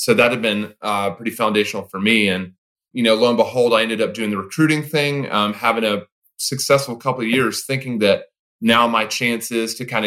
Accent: American